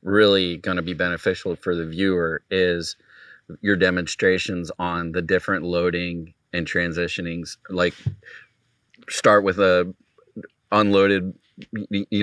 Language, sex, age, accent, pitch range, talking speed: English, male, 30-49, American, 90-105 Hz, 115 wpm